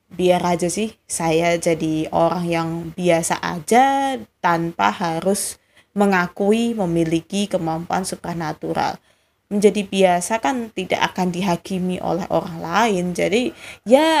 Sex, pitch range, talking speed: female, 170-205 Hz, 110 wpm